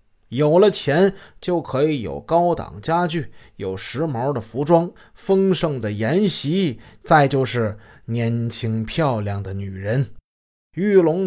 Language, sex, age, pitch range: Chinese, male, 20-39, 115-175 Hz